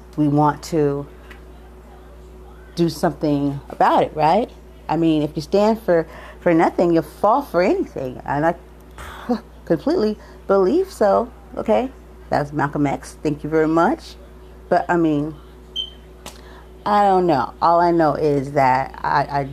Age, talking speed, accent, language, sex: 30-49, 140 wpm, American, English, female